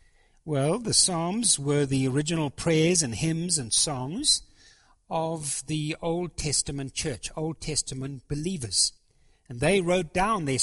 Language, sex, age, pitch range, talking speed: English, male, 60-79, 135-185 Hz, 135 wpm